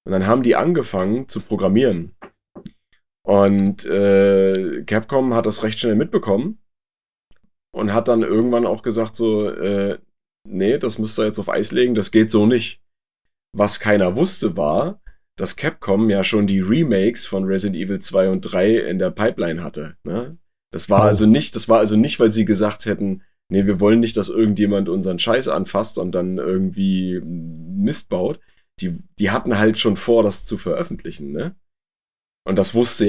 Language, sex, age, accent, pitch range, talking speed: German, male, 30-49, German, 100-120 Hz, 170 wpm